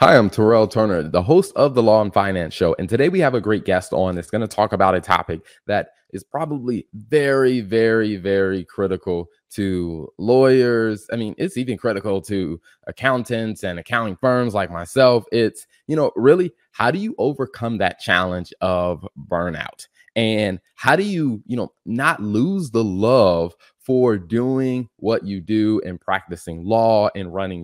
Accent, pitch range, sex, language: American, 95-130 Hz, male, English